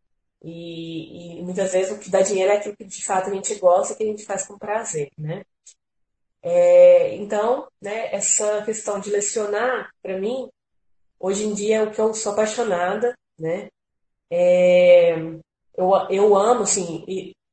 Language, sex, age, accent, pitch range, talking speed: Portuguese, female, 20-39, Brazilian, 180-220 Hz, 170 wpm